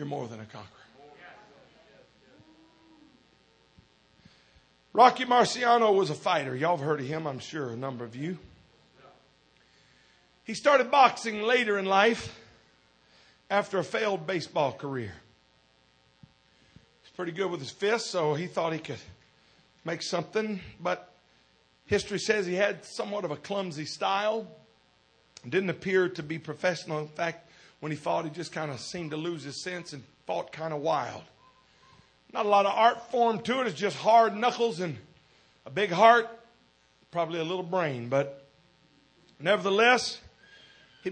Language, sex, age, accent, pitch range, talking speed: English, male, 50-69, American, 155-235 Hz, 155 wpm